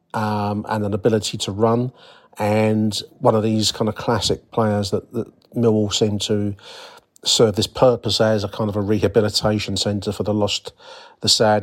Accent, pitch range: British, 105-120 Hz